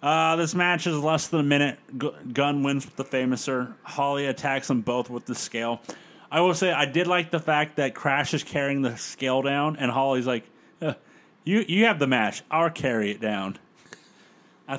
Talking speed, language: 200 wpm, English